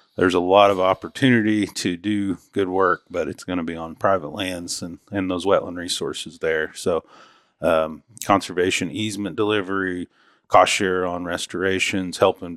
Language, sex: English, male